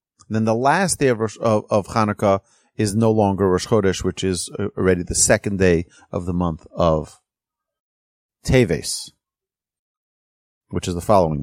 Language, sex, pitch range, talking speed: English, male, 95-125 Hz, 145 wpm